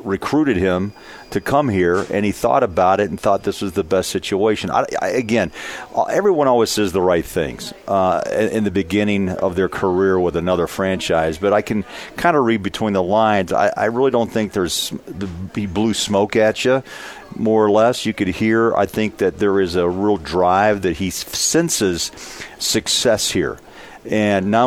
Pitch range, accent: 95-110 Hz, American